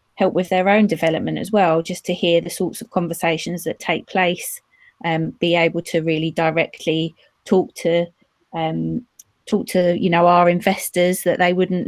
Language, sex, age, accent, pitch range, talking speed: English, female, 20-39, British, 170-195 Hz, 175 wpm